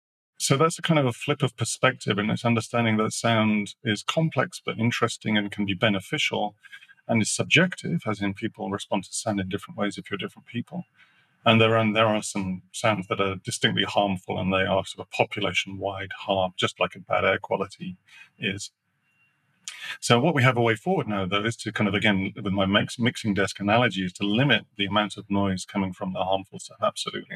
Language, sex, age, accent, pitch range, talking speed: English, male, 30-49, British, 100-120 Hz, 210 wpm